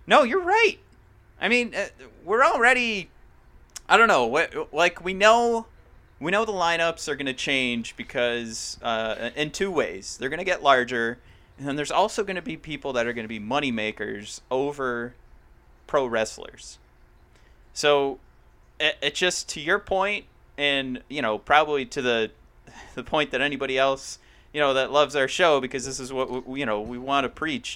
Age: 30-49